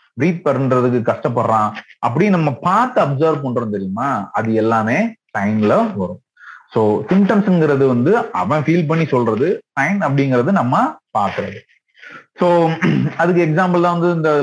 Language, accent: Tamil, native